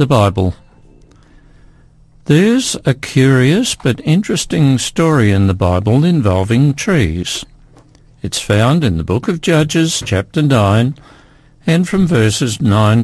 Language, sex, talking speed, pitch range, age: English, male, 120 wpm, 115-150 Hz, 60-79